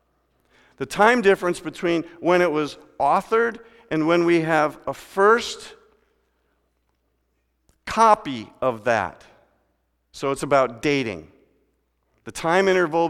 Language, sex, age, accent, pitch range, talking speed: English, male, 50-69, American, 125-175 Hz, 110 wpm